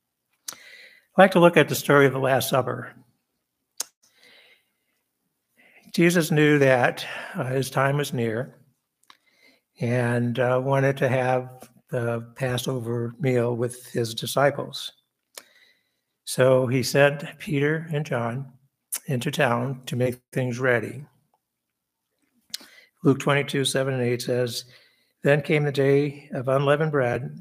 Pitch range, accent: 125-145 Hz, American